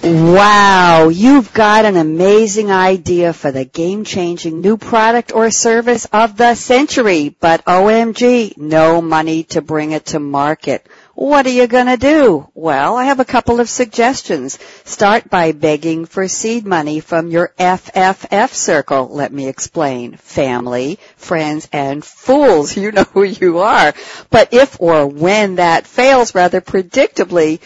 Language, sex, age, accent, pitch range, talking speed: English, female, 60-79, American, 160-225 Hz, 150 wpm